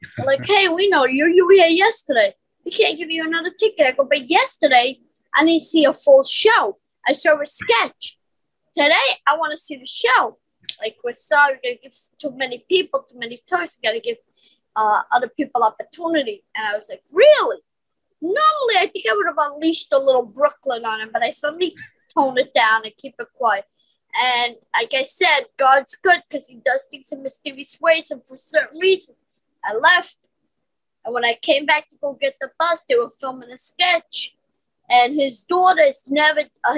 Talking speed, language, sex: 205 wpm, English, female